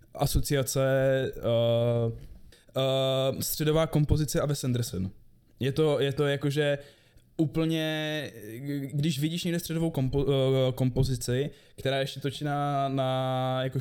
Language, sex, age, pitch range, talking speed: Czech, male, 20-39, 125-145 Hz, 115 wpm